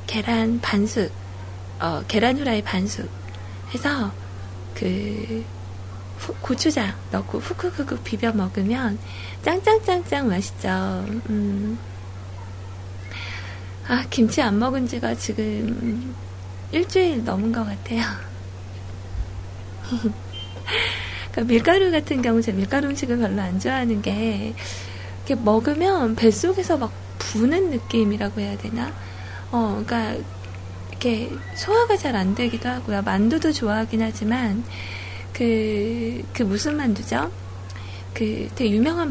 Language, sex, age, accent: Korean, female, 20-39, native